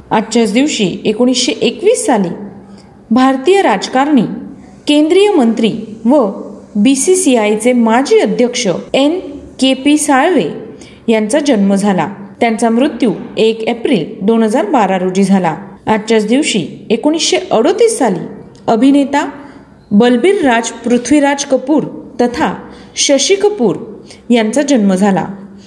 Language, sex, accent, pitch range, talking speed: Marathi, female, native, 215-290 Hz, 100 wpm